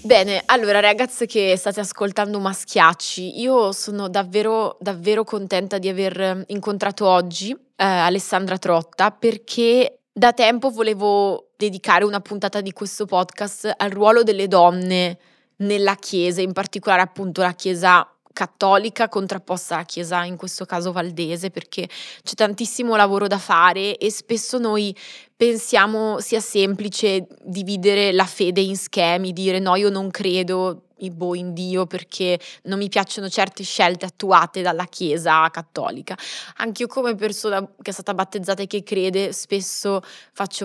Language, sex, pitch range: Italian, female, 185-205 Hz